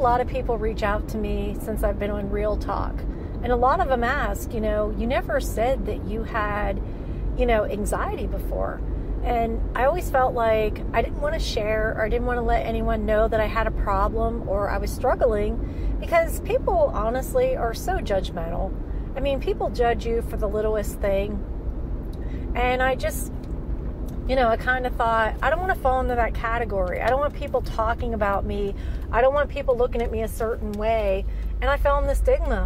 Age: 40-59